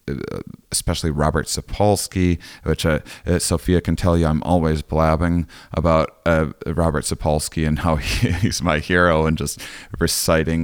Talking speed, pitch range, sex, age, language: 145 wpm, 80-95 Hz, male, 30-49, English